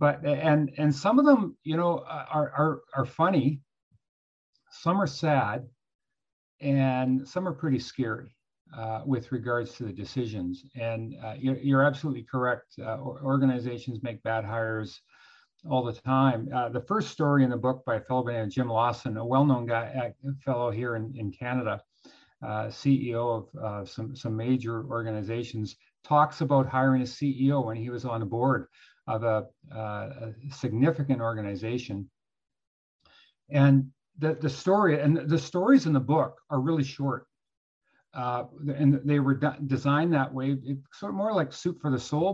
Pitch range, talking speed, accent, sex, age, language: 120-145 Hz, 165 wpm, American, male, 50-69, English